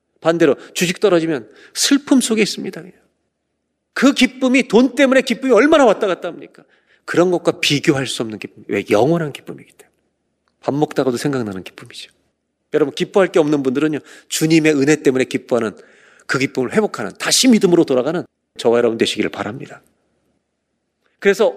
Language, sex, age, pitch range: Korean, male, 40-59, 130-200 Hz